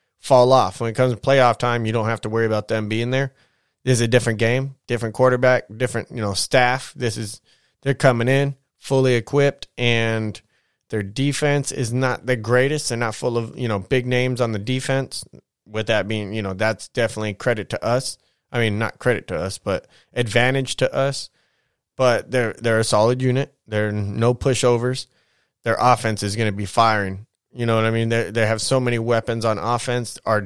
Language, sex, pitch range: English, male, 115-135 Hz